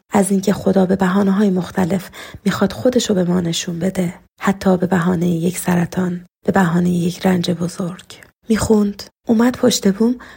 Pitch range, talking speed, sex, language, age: 185-215 Hz, 155 wpm, female, Persian, 30-49